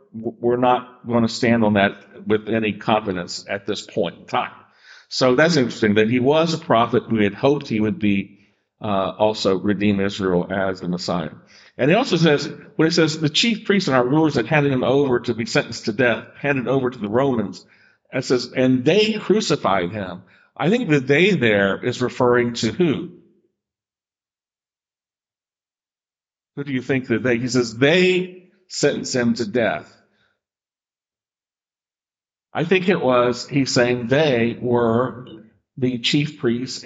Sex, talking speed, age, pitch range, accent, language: male, 170 wpm, 50-69, 115-145 Hz, American, English